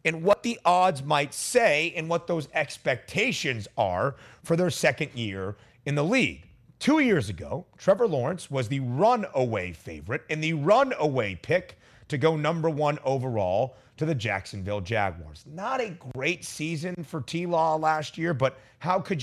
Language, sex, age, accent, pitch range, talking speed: English, male, 30-49, American, 120-170 Hz, 160 wpm